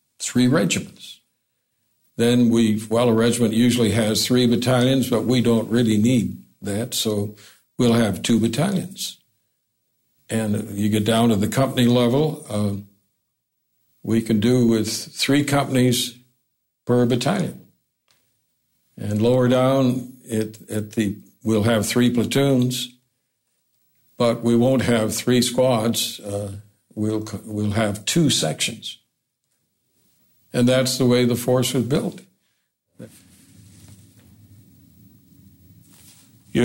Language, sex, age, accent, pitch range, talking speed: English, male, 60-79, American, 100-120 Hz, 115 wpm